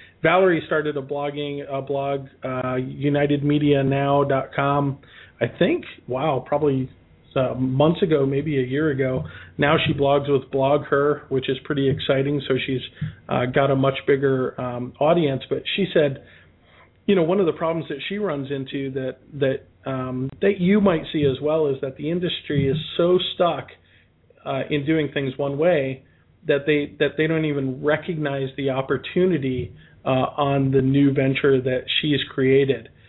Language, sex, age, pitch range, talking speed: English, male, 40-59, 135-160 Hz, 160 wpm